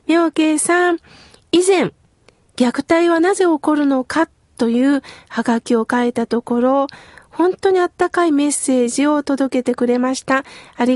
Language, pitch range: Japanese, 240-320 Hz